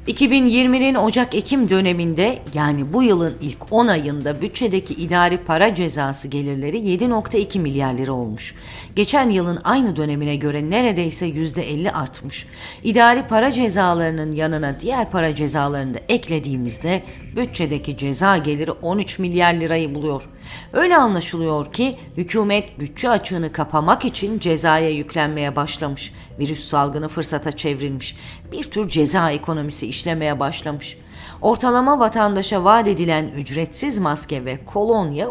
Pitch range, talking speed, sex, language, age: 150-205 Hz, 120 wpm, female, Turkish, 50-69